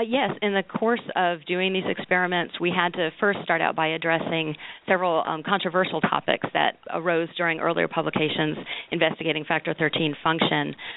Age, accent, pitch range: 40-59, American, 155-180 Hz